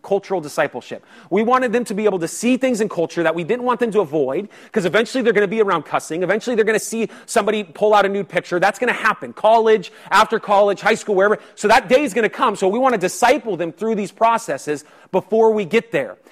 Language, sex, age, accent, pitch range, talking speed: English, male, 30-49, American, 170-230 Hz, 255 wpm